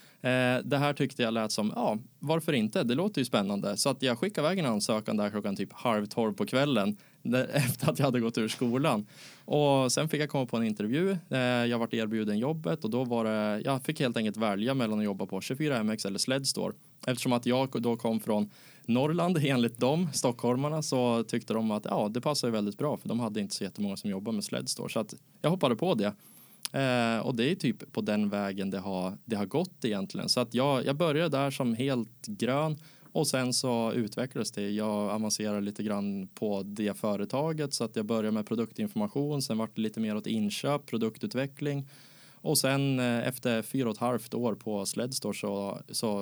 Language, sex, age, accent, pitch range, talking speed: Swedish, male, 20-39, Norwegian, 105-140 Hz, 205 wpm